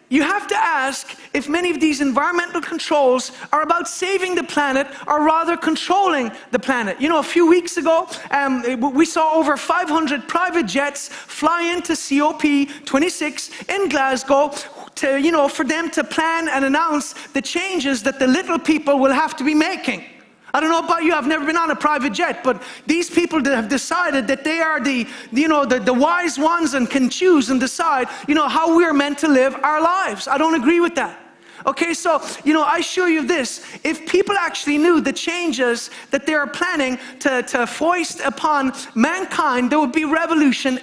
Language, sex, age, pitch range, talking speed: English, male, 30-49, 275-335 Hz, 200 wpm